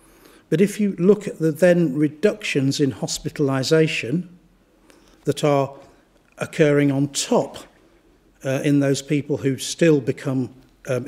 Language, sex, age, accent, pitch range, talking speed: English, male, 50-69, British, 135-160 Hz, 125 wpm